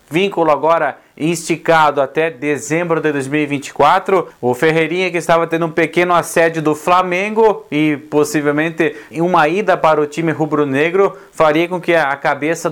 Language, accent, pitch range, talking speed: Portuguese, Brazilian, 145-170 Hz, 140 wpm